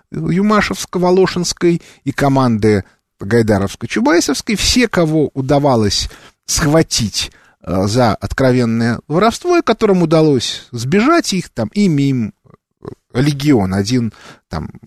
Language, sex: Russian, male